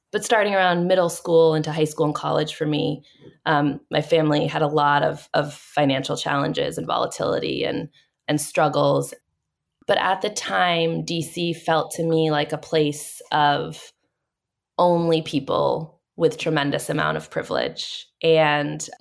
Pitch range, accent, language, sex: 150-175 Hz, American, English, female